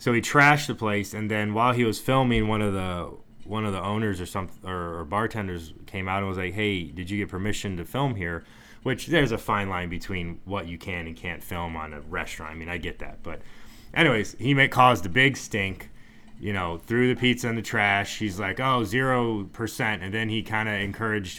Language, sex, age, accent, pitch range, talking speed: English, male, 20-39, American, 95-120 Hz, 235 wpm